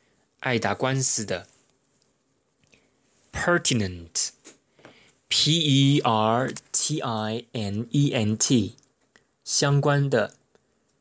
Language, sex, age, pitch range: Chinese, male, 20-39, 110-140 Hz